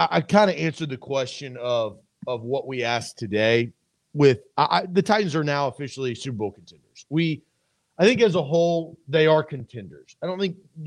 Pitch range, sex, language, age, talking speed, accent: 155-210 Hz, male, English, 40-59, 190 wpm, American